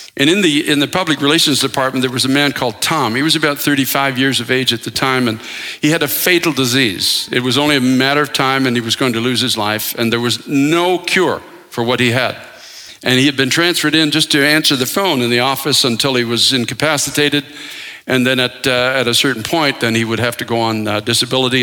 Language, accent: English, American